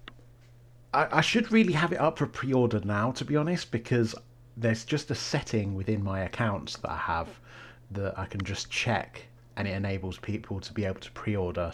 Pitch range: 105-125 Hz